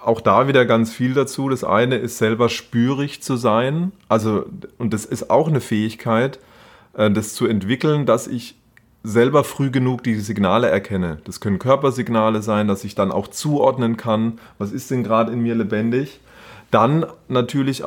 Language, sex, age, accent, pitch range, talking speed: German, male, 30-49, German, 110-135 Hz, 170 wpm